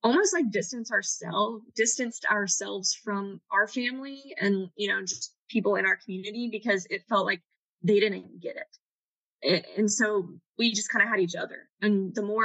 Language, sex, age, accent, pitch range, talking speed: English, female, 10-29, American, 190-215 Hz, 180 wpm